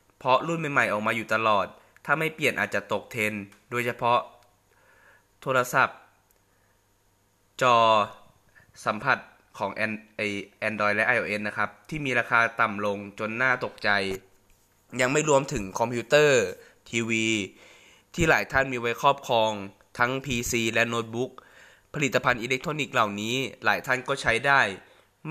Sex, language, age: male, Thai, 20-39